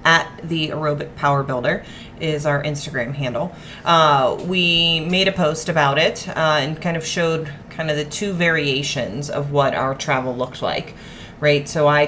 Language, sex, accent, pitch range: English, female, American, 140-155 Hz